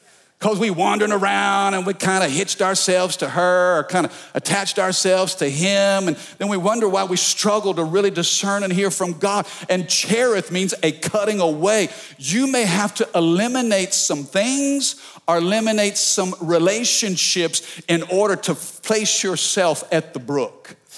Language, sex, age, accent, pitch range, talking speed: English, male, 50-69, American, 170-205 Hz, 165 wpm